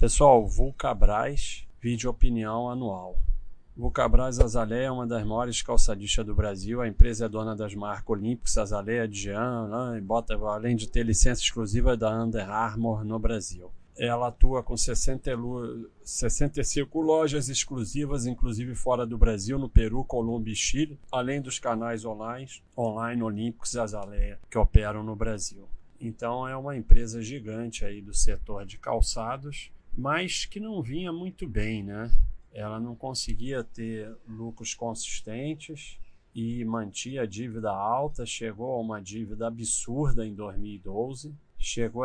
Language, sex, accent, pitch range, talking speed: Portuguese, male, Brazilian, 105-125 Hz, 140 wpm